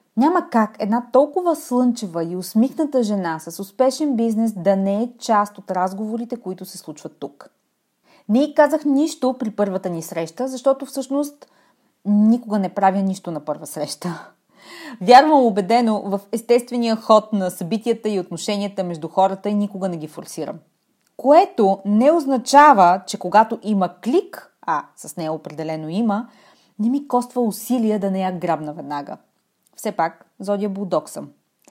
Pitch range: 190-245 Hz